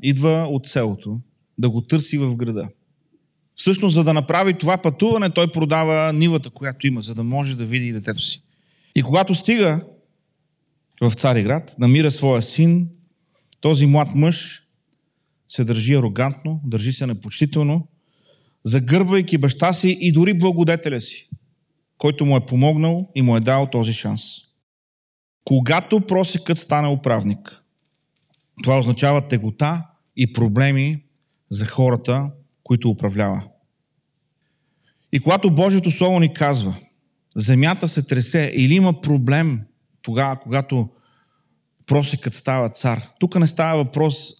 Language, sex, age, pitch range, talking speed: Bulgarian, male, 40-59, 120-160 Hz, 130 wpm